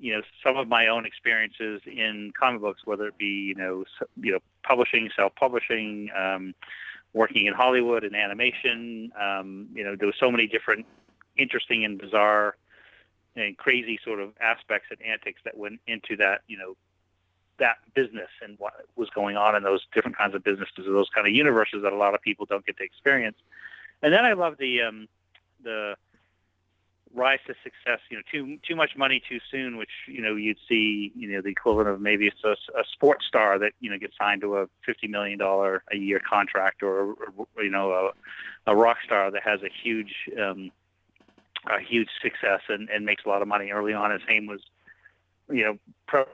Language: English